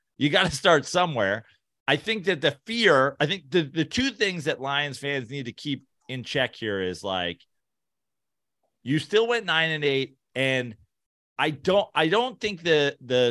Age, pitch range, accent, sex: 30-49, 125-180 Hz, American, male